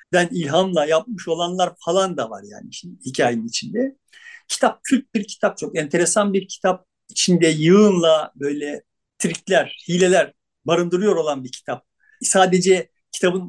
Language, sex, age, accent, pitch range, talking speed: Turkish, male, 50-69, native, 175-220 Hz, 130 wpm